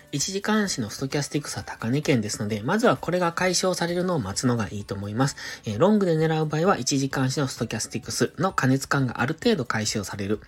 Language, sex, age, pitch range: Japanese, male, 20-39, 115-160 Hz